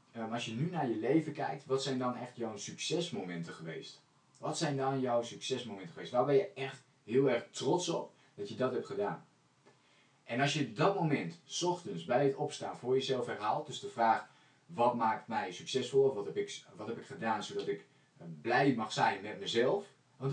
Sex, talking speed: male, 195 wpm